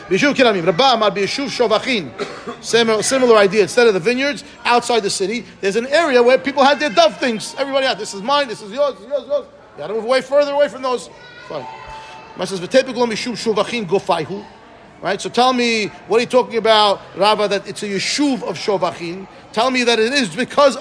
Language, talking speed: English, 185 wpm